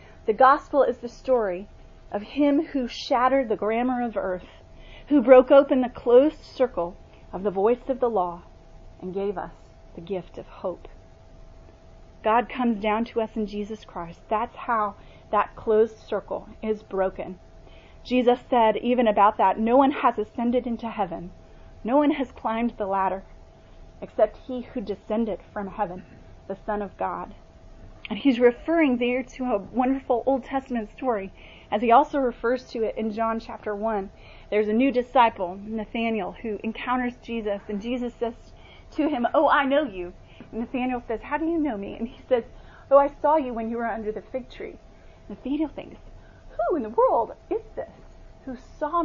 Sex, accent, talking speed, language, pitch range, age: female, American, 175 wpm, English, 210-255 Hz, 30-49